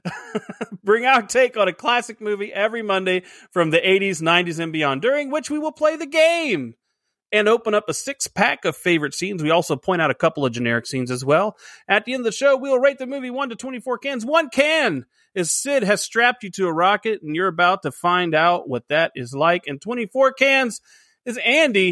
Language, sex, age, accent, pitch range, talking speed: English, male, 30-49, American, 165-240 Hz, 220 wpm